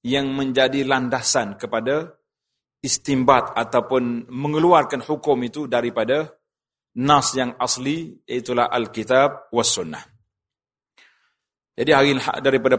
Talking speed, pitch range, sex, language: 95 wpm, 120-135 Hz, male, Malay